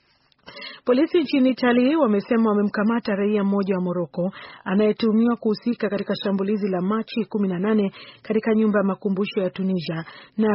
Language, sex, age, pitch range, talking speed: Swahili, female, 40-59, 190-225 Hz, 130 wpm